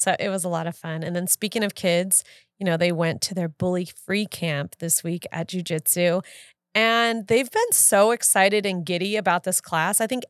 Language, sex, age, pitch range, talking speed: English, female, 30-49, 175-210 Hz, 215 wpm